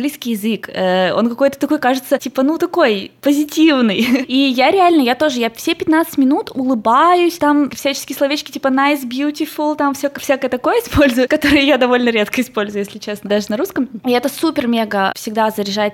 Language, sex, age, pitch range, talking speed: Russian, female, 20-39, 210-285 Hz, 175 wpm